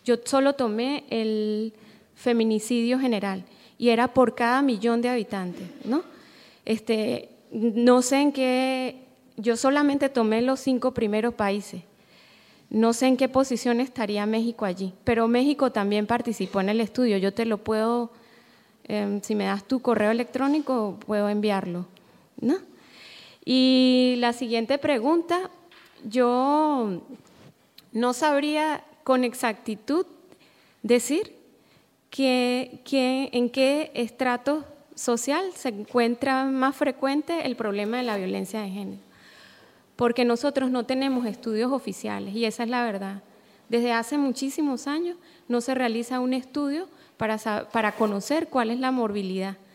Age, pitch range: 20-39, 215-265 Hz